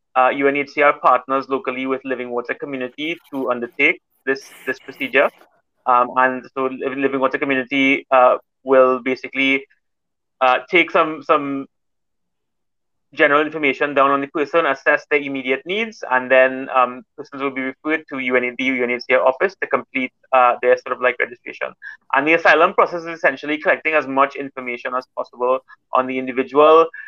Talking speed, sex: 155 wpm, male